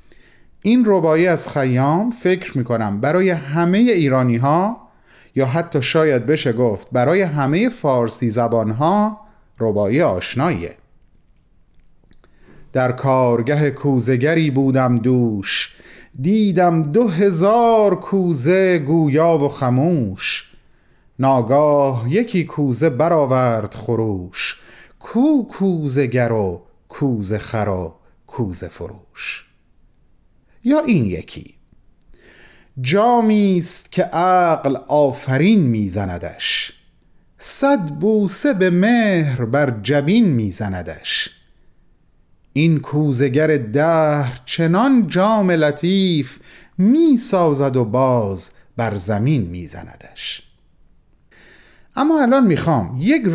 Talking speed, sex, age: 90 wpm, male, 30-49